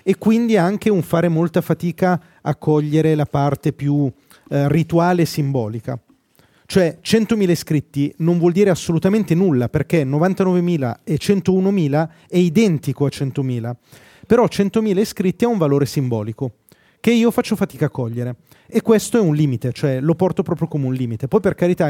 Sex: male